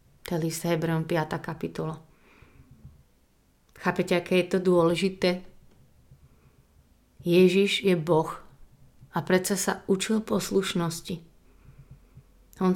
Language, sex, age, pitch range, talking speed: Slovak, female, 30-49, 165-190 Hz, 95 wpm